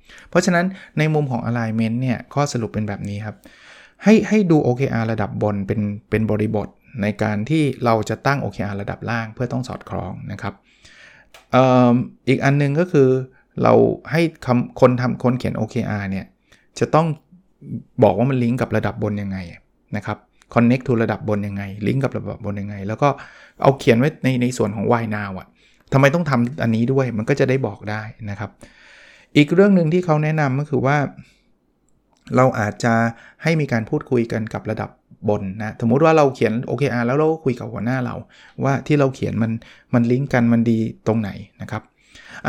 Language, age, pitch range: Thai, 20-39, 110-135 Hz